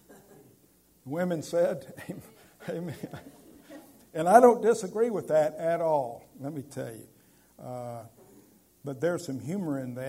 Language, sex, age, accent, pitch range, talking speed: English, male, 60-79, American, 115-150 Hz, 130 wpm